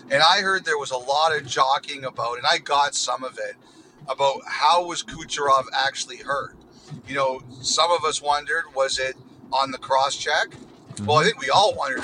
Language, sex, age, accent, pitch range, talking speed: English, male, 40-59, American, 135-165 Hz, 195 wpm